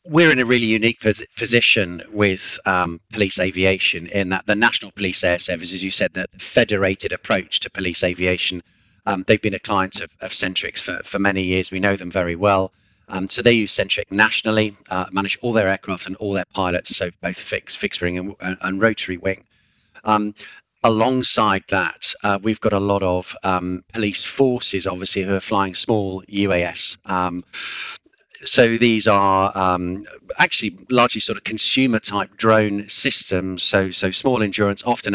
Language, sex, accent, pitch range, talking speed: English, male, British, 95-110 Hz, 170 wpm